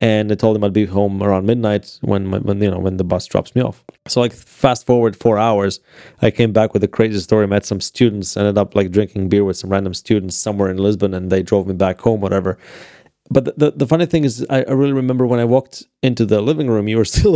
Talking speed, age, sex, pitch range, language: 260 wpm, 30-49, male, 100-140 Hz, English